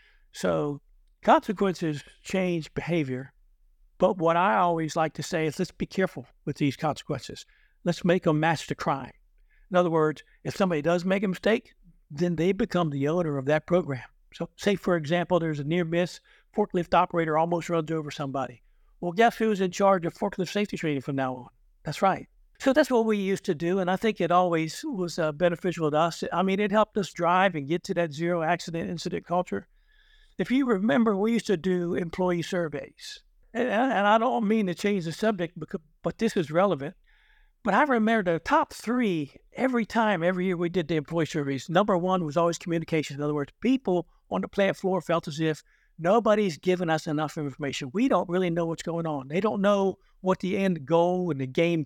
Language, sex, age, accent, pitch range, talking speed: English, male, 60-79, American, 160-200 Hz, 200 wpm